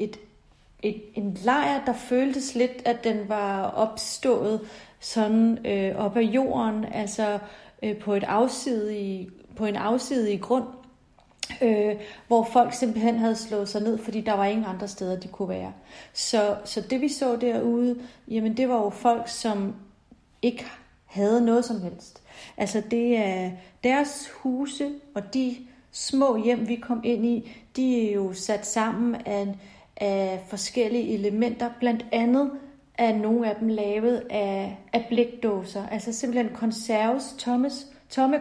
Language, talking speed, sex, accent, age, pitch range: Danish, 135 wpm, female, native, 30-49, 205-245 Hz